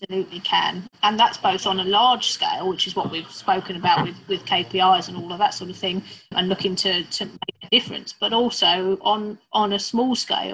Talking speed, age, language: 220 wpm, 30-49, English